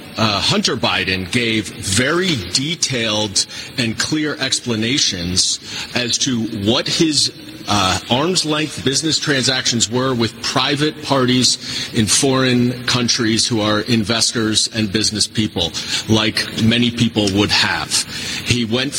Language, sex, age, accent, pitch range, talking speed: English, male, 40-59, American, 110-140 Hz, 120 wpm